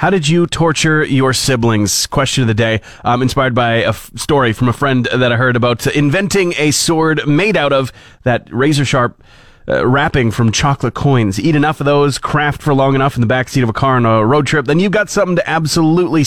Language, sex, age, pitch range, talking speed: English, male, 30-49, 120-155 Hz, 225 wpm